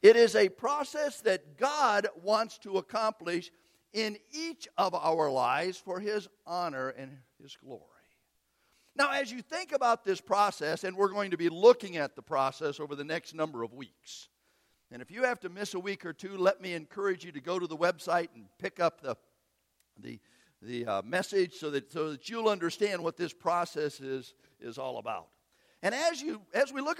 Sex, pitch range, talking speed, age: male, 175-275 Hz, 195 wpm, 50-69